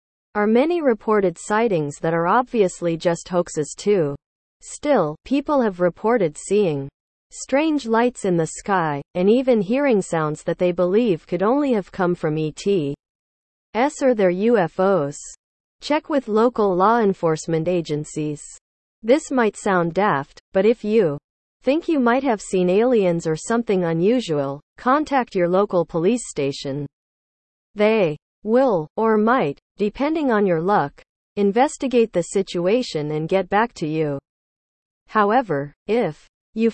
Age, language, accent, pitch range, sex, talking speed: 40-59, English, American, 165-235 Hz, female, 135 wpm